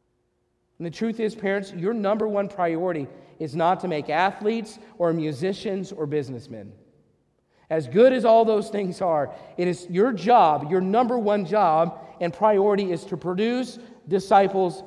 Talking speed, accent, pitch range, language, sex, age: 155 wpm, American, 180-225 Hz, English, male, 40-59